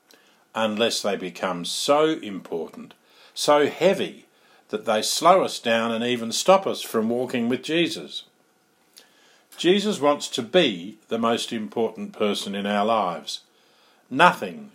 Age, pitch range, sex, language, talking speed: 50-69, 105-155 Hz, male, English, 130 wpm